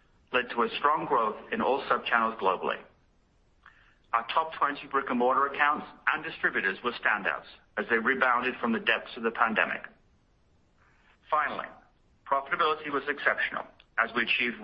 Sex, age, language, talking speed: male, 50-69, English, 150 wpm